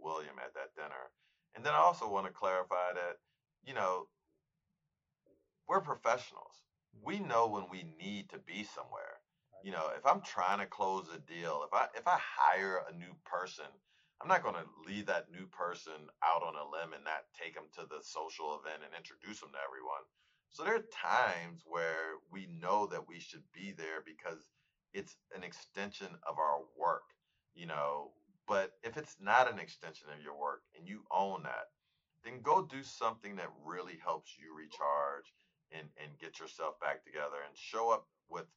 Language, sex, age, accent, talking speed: English, male, 40-59, American, 185 wpm